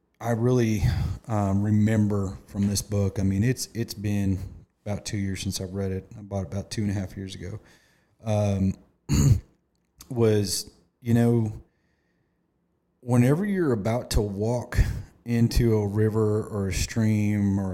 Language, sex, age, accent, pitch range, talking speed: English, male, 30-49, American, 95-110 Hz, 150 wpm